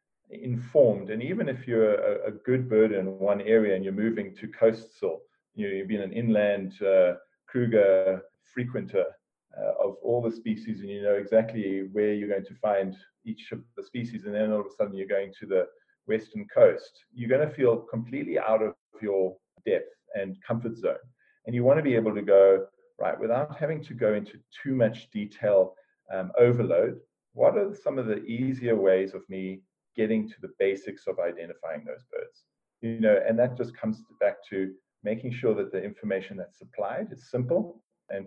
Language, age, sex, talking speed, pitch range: English, 40-59, male, 190 wpm, 100-140 Hz